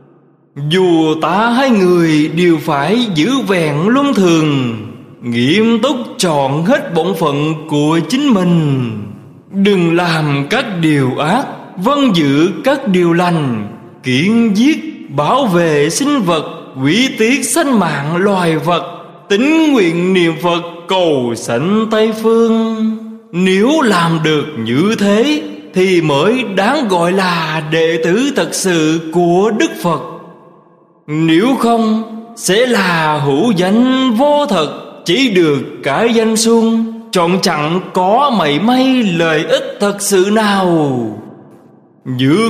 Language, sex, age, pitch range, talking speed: Vietnamese, male, 20-39, 155-230 Hz, 125 wpm